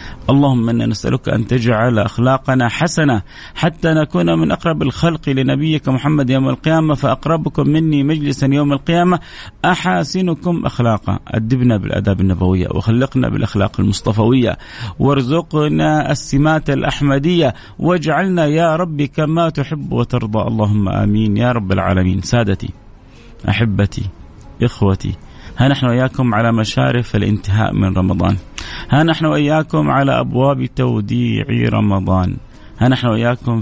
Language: English